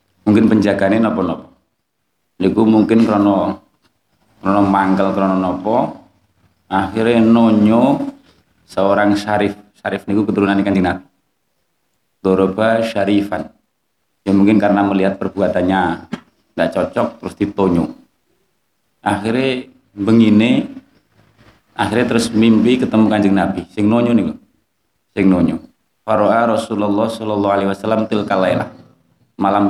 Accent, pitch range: native, 95-115 Hz